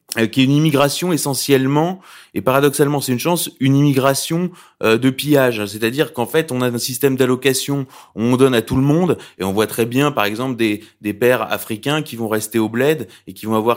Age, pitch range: 20-39, 110-140 Hz